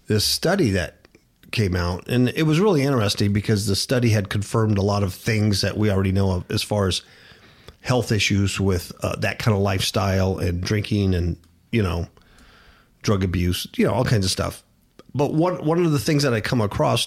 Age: 50-69